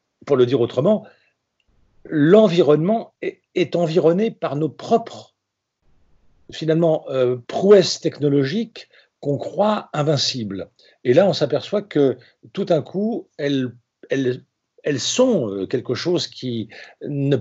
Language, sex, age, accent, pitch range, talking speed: French, male, 50-69, French, 125-170 Hz, 115 wpm